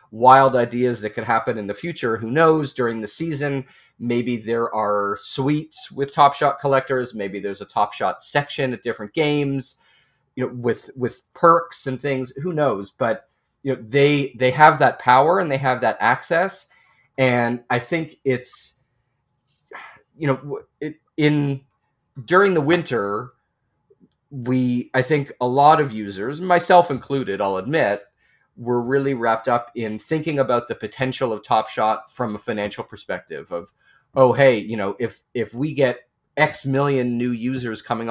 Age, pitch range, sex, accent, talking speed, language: 30-49, 115-140 Hz, male, American, 160 wpm, English